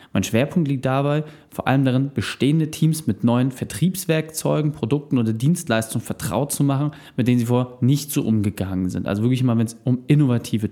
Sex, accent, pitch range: male, German, 110-150 Hz